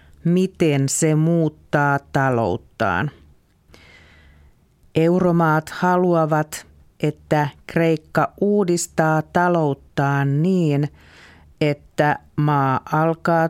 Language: Finnish